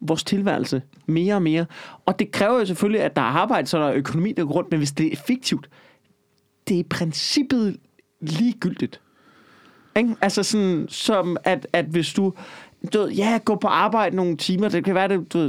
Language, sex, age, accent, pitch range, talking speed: Danish, male, 30-49, native, 150-195 Hz, 195 wpm